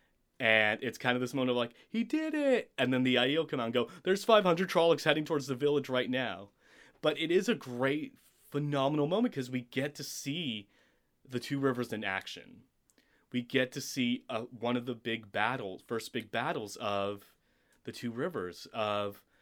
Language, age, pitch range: English, 30-49, 110-140 Hz